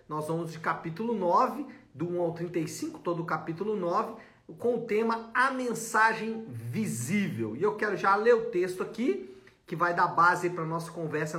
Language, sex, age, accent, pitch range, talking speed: Portuguese, male, 50-69, Brazilian, 170-235 Hz, 185 wpm